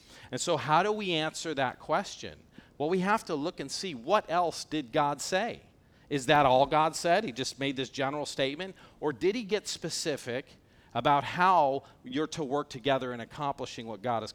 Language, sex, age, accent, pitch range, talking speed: English, male, 40-59, American, 130-160 Hz, 195 wpm